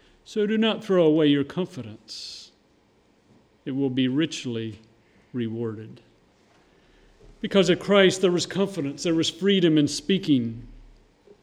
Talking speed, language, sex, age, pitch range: 120 wpm, English, male, 50-69, 135-185 Hz